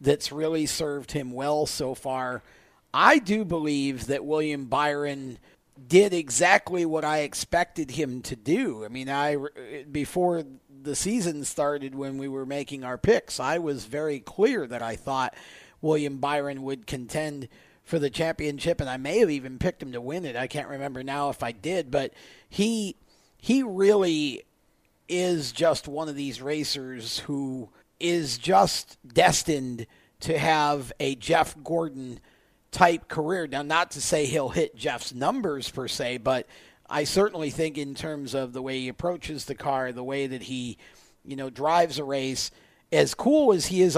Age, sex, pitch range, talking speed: 40-59, male, 135-175 Hz, 170 wpm